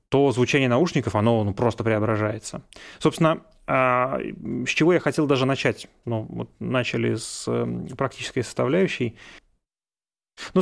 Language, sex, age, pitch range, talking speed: Russian, male, 30-49, 120-155 Hz, 120 wpm